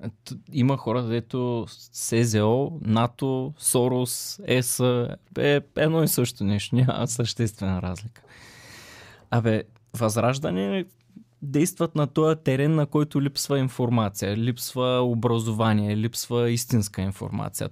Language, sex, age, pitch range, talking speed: Bulgarian, male, 20-39, 110-130 Hz, 105 wpm